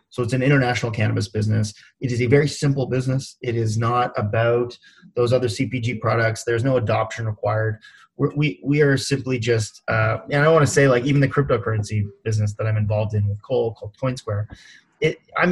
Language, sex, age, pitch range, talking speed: English, male, 20-39, 110-125 Hz, 195 wpm